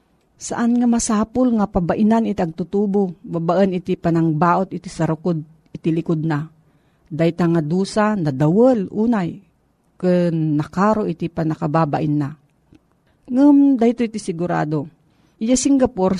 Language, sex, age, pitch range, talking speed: Filipino, female, 50-69, 165-205 Hz, 125 wpm